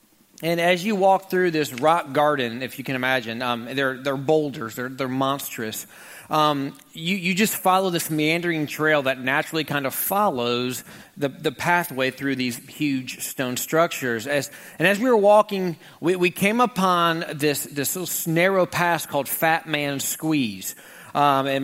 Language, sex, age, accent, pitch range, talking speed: English, male, 40-59, American, 150-195 Hz, 170 wpm